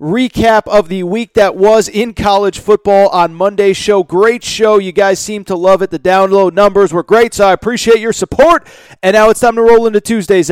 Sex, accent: male, American